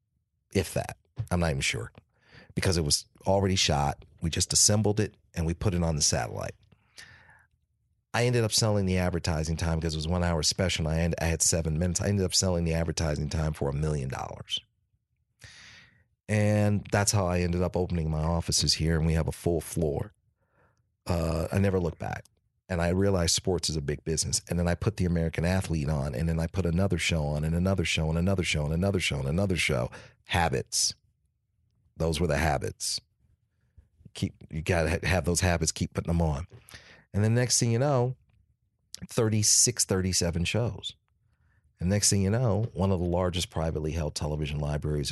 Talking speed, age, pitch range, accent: 195 wpm, 40-59, 80-105 Hz, American